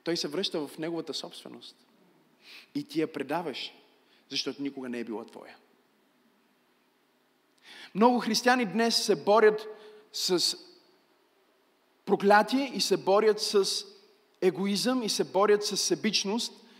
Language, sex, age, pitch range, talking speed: Bulgarian, male, 30-49, 190-235 Hz, 120 wpm